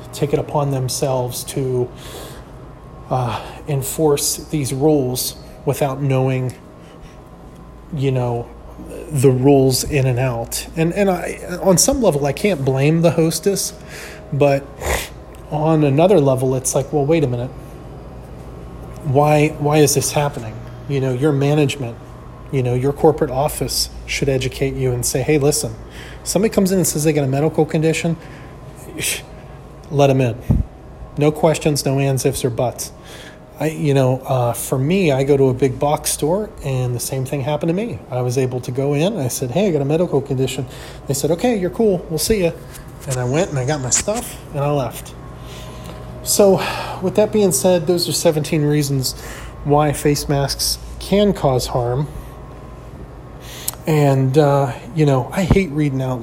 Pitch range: 130-155 Hz